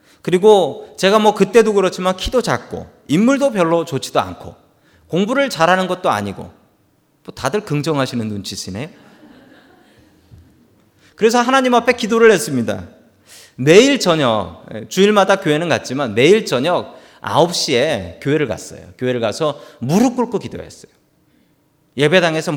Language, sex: Korean, male